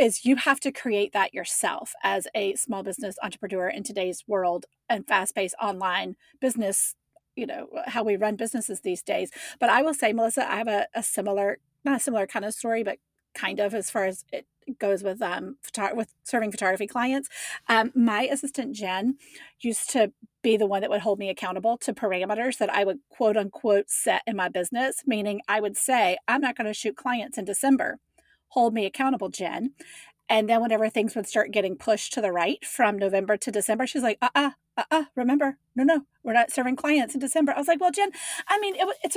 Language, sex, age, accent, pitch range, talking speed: English, female, 40-59, American, 205-275 Hz, 210 wpm